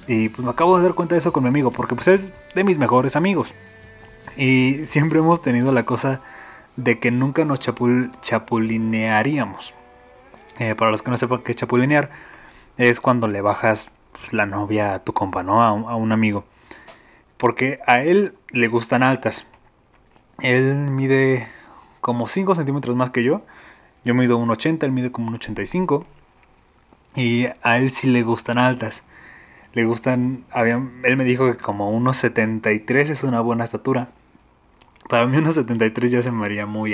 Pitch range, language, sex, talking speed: 110-130 Hz, Spanish, male, 170 wpm